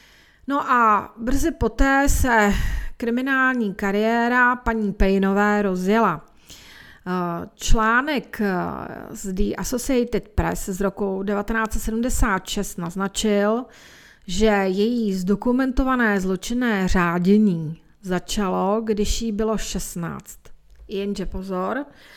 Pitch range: 195-235 Hz